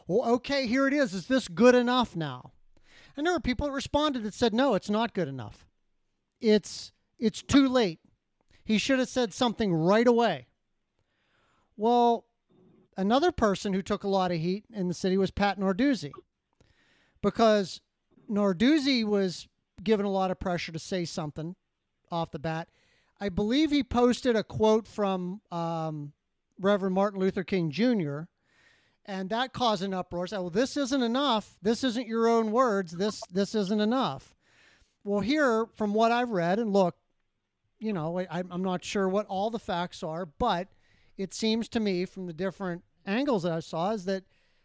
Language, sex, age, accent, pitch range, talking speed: English, male, 40-59, American, 185-235 Hz, 170 wpm